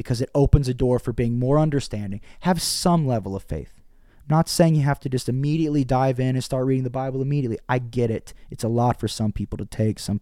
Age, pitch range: 20-39, 100-130 Hz